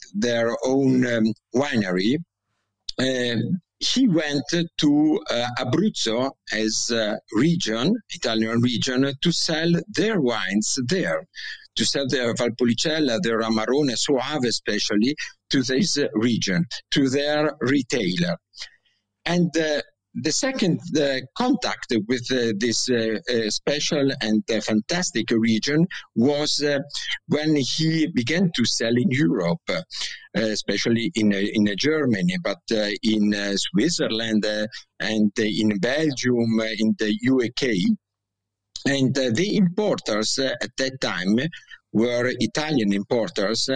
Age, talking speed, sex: 50-69, 120 wpm, male